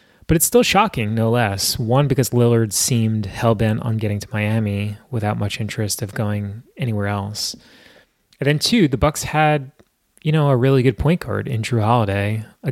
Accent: American